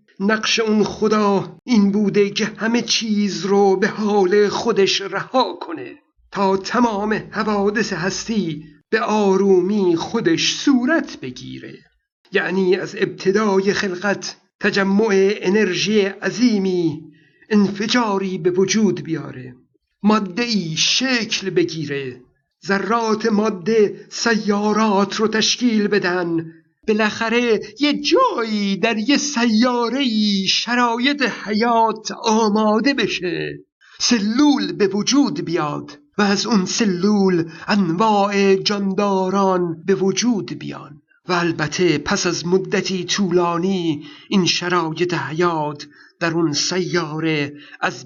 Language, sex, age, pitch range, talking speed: Persian, male, 60-79, 180-220 Hz, 100 wpm